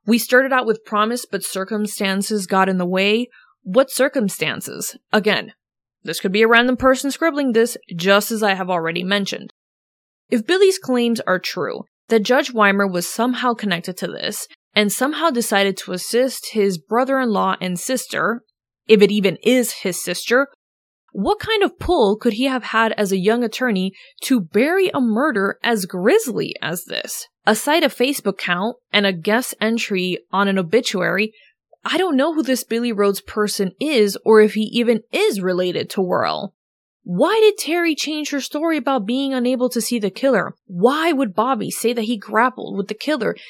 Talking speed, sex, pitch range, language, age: 175 wpm, female, 200-260 Hz, English, 20-39